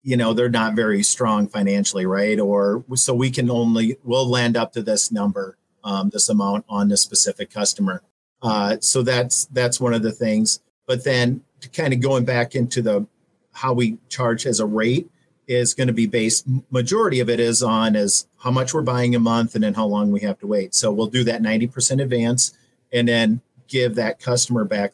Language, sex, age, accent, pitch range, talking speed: English, male, 50-69, American, 105-130 Hz, 205 wpm